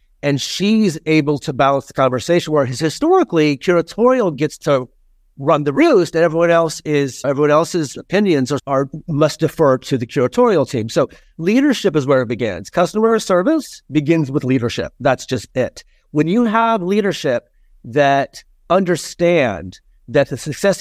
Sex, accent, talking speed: male, American, 150 wpm